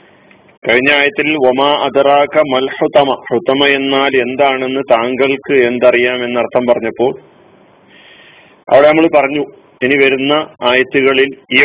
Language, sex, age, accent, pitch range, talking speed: Malayalam, male, 40-59, native, 125-150 Hz, 75 wpm